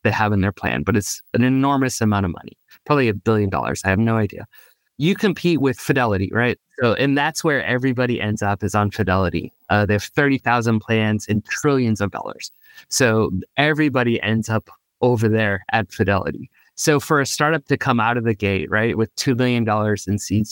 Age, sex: 20-39, male